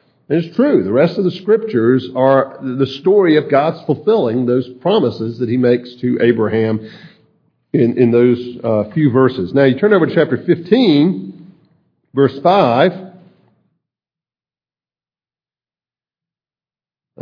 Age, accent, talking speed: 50-69, American, 125 wpm